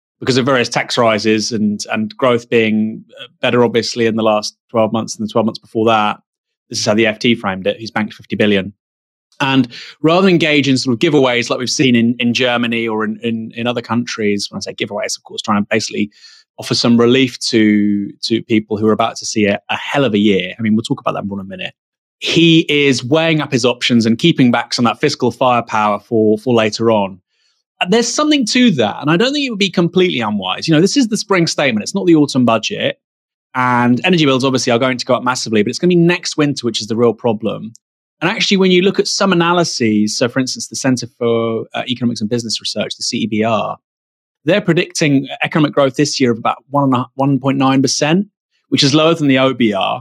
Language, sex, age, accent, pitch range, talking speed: English, male, 20-39, British, 110-150 Hz, 230 wpm